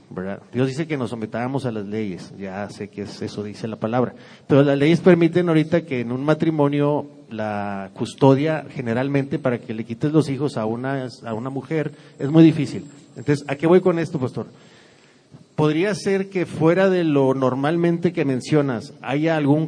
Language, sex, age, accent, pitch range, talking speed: Spanish, male, 40-59, Mexican, 130-160 Hz, 185 wpm